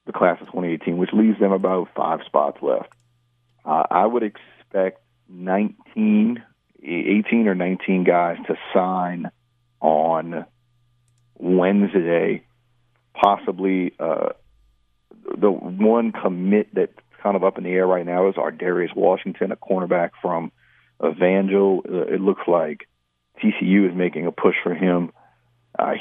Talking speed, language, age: 135 wpm, English, 40-59